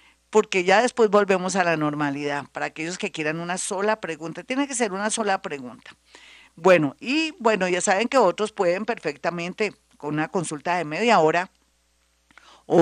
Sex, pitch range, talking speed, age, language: female, 155-185 Hz, 170 wpm, 50-69, Spanish